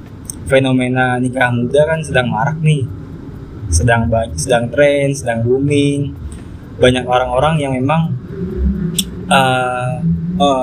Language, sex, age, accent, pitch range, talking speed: Indonesian, male, 20-39, native, 115-140 Hz, 100 wpm